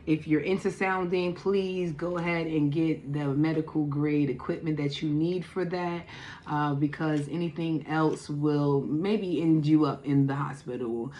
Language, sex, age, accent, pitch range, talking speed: English, female, 30-49, American, 145-185 Hz, 160 wpm